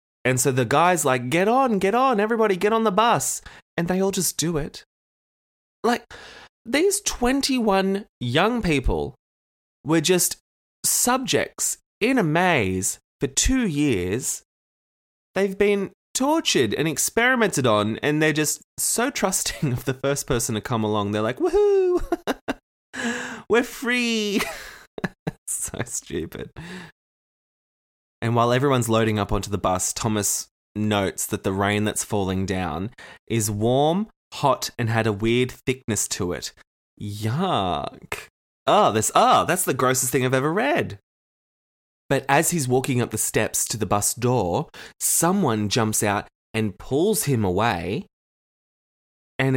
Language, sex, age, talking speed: English, male, 20-39, 140 wpm